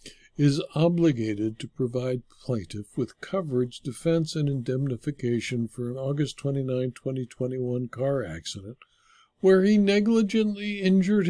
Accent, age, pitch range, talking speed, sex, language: American, 60-79, 120-160 Hz, 110 wpm, male, English